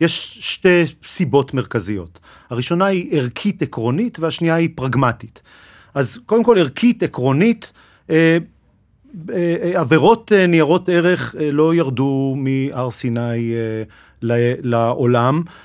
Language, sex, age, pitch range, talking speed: Hebrew, male, 40-59, 125-165 Hz, 90 wpm